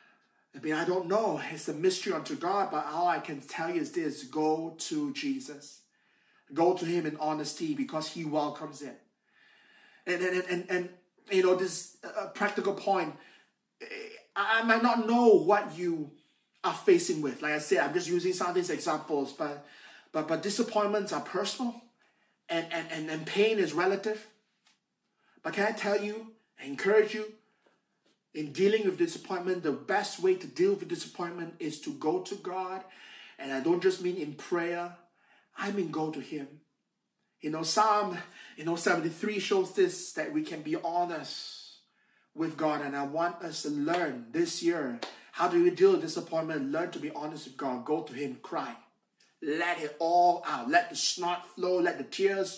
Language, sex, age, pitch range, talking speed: English, male, 30-49, 165-230 Hz, 180 wpm